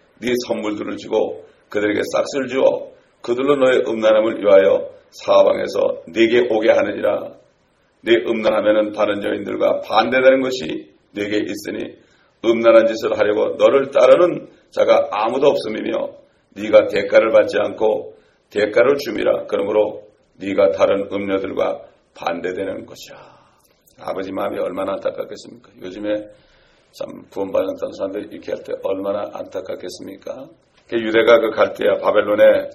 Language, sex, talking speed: English, male, 105 wpm